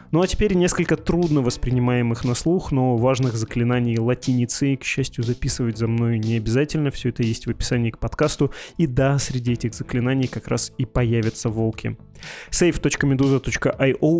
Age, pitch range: 20-39, 120-145 Hz